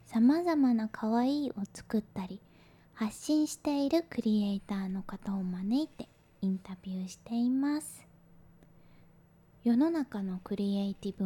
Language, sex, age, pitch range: Japanese, female, 20-39, 200-250 Hz